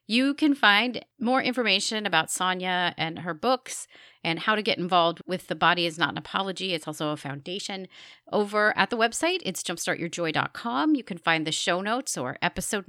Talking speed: 185 wpm